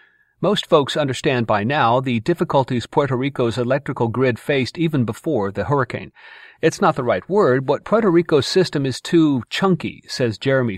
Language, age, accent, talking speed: English, 40-59, American, 165 wpm